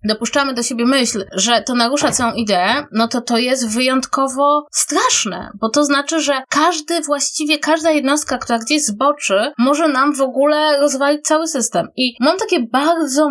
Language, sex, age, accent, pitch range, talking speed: Polish, female, 20-39, native, 235-315 Hz, 165 wpm